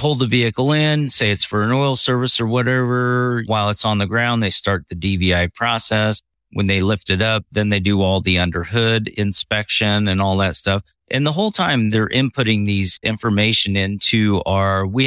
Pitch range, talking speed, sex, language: 100-130 Hz, 200 wpm, male, English